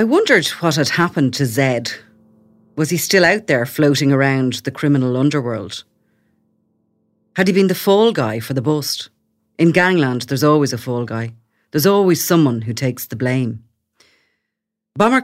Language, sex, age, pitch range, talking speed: English, female, 40-59, 125-155 Hz, 160 wpm